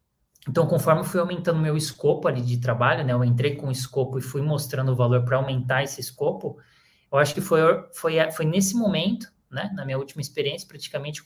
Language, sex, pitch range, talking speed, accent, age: Portuguese, male, 125-165 Hz, 215 wpm, Brazilian, 20-39